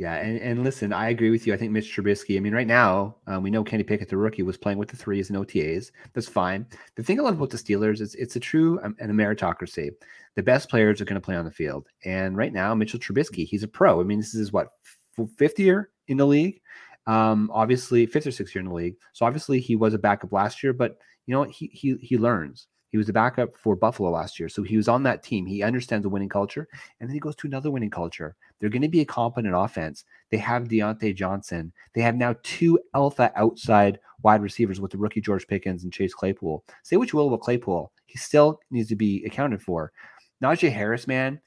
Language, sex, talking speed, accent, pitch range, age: English, male, 245 wpm, American, 100-120 Hz, 30-49